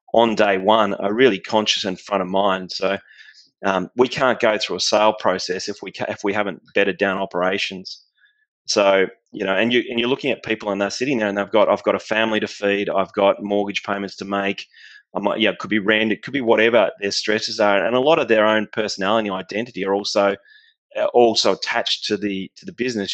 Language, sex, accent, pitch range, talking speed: English, male, Australian, 95-110 Hz, 230 wpm